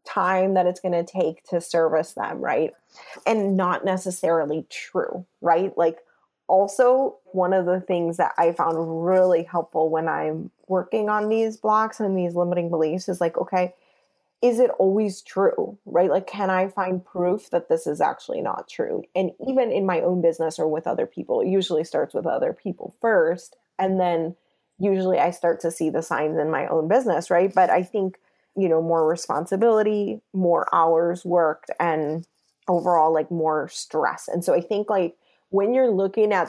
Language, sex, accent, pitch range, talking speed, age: English, female, American, 170-210 Hz, 180 wpm, 20-39